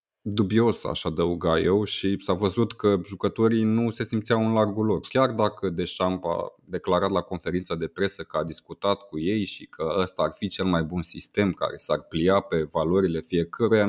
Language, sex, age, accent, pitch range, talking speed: Romanian, male, 20-39, native, 85-105 Hz, 190 wpm